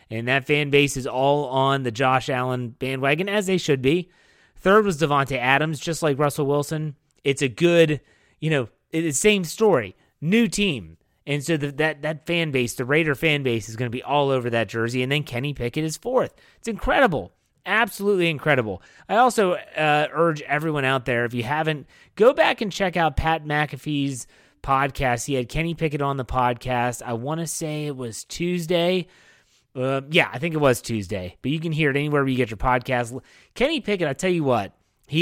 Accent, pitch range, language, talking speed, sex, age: American, 130-170 Hz, English, 205 wpm, male, 30-49